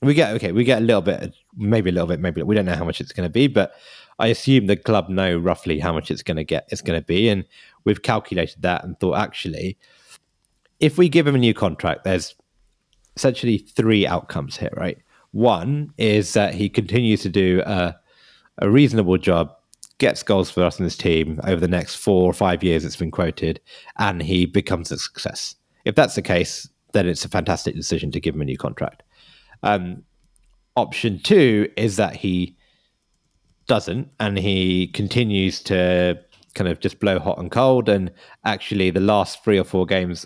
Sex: male